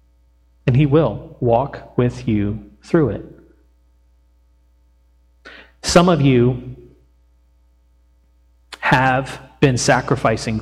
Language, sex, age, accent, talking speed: English, male, 40-59, American, 80 wpm